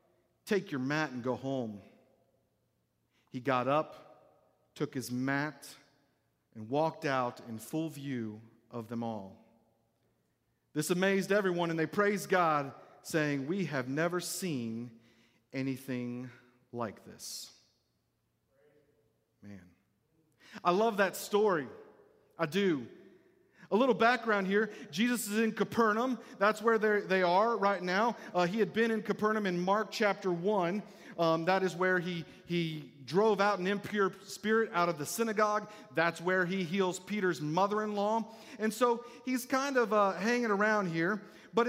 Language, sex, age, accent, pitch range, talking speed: English, male, 40-59, American, 145-215 Hz, 140 wpm